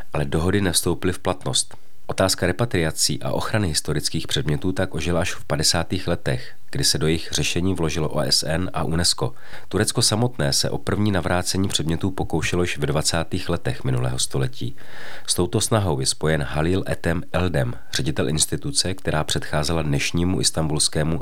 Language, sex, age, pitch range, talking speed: Czech, male, 40-59, 75-95 Hz, 155 wpm